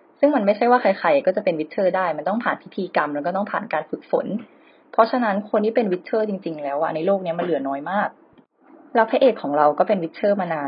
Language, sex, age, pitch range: Thai, female, 20-39, 165-225 Hz